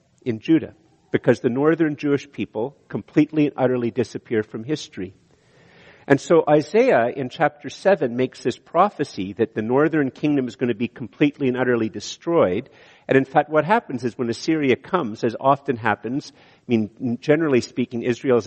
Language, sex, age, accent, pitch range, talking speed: English, male, 50-69, American, 115-150 Hz, 165 wpm